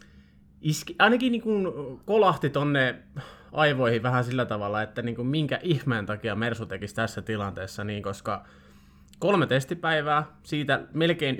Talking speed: 125 wpm